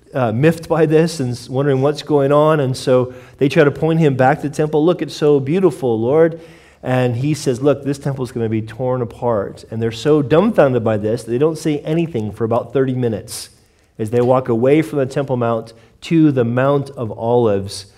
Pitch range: 115-150 Hz